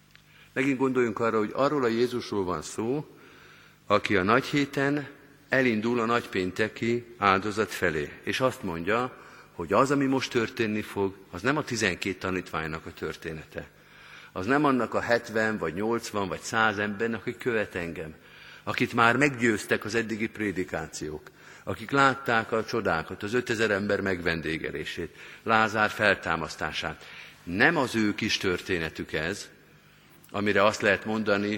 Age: 50-69